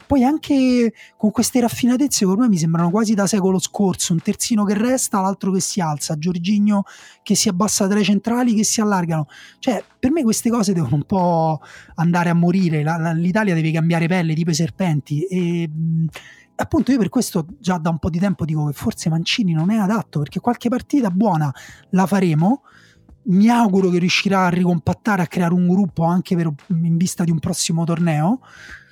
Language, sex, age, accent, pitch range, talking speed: Italian, male, 30-49, native, 160-205 Hz, 195 wpm